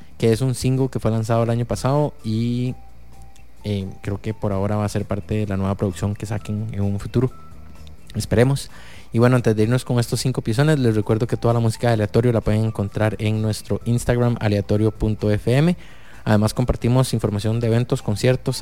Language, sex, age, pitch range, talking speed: English, male, 20-39, 105-125 Hz, 195 wpm